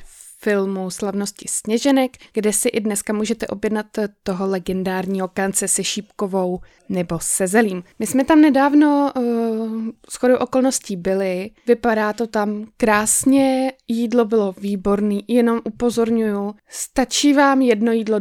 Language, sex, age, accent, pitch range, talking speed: Czech, female, 20-39, native, 195-235 Hz, 125 wpm